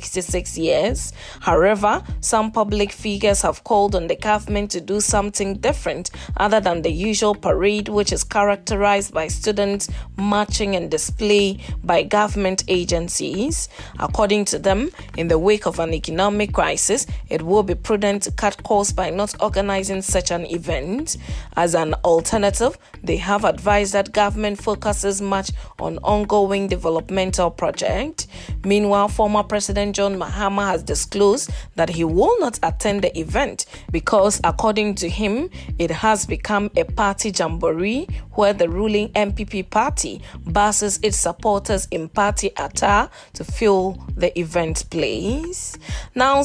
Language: English